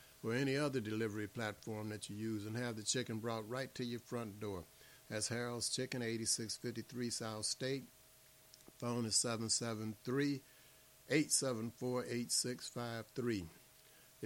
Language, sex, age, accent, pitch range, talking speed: English, male, 60-79, American, 110-125 Hz, 115 wpm